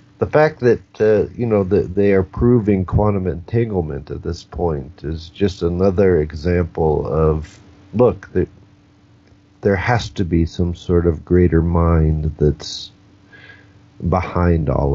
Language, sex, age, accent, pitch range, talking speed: English, male, 50-69, American, 85-100 Hz, 135 wpm